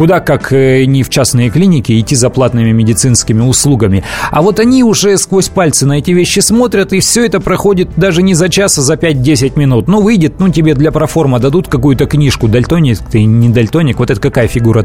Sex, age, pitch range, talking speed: male, 30-49, 125-165 Hz, 200 wpm